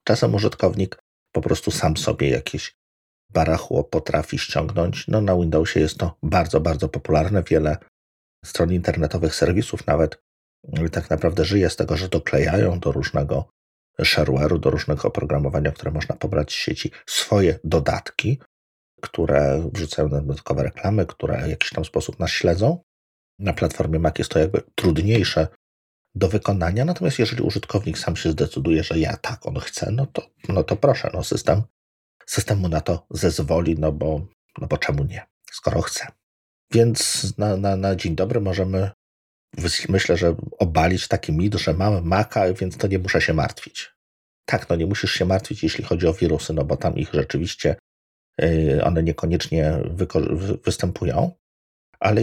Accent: native